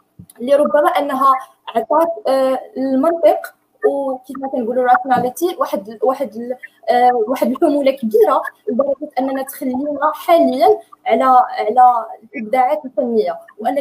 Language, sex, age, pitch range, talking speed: Arabic, female, 20-39, 235-295 Hz, 105 wpm